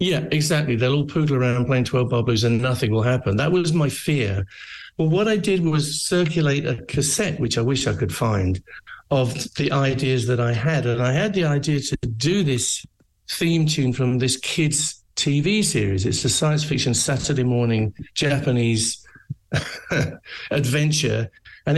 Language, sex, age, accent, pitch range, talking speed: English, male, 60-79, British, 120-155 Hz, 170 wpm